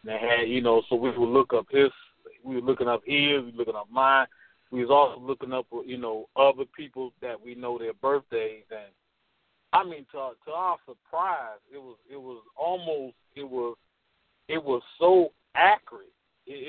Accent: American